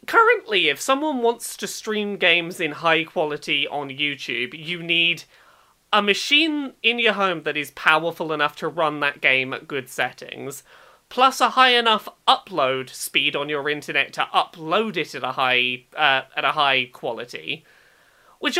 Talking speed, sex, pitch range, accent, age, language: 165 wpm, male, 155-240 Hz, British, 30-49, English